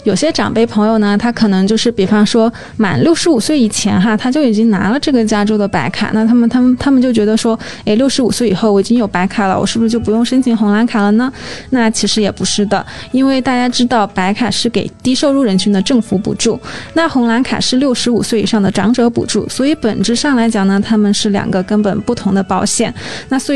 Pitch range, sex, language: 200-235 Hz, female, Chinese